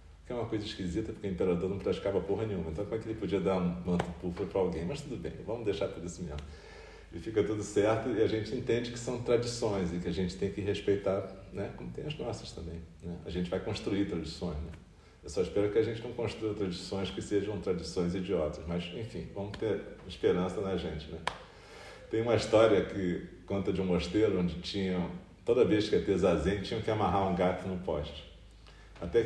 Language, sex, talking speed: Portuguese, male, 220 wpm